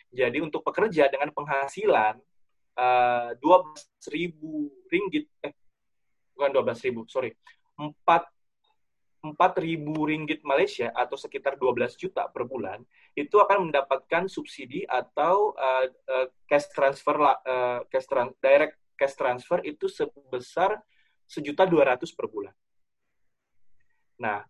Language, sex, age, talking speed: Indonesian, male, 20-39, 105 wpm